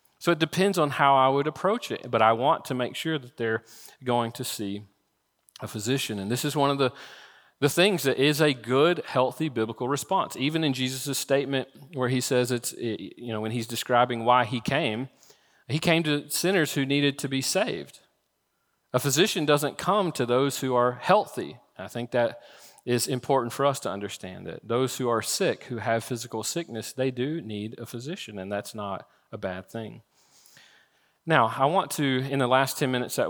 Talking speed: 200 wpm